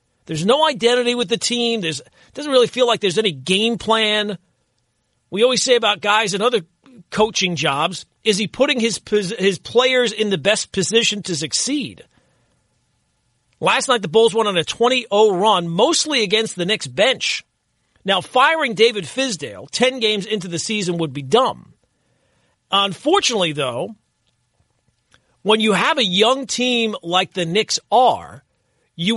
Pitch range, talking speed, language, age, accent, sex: 180-245 Hz, 155 wpm, English, 40-59, American, male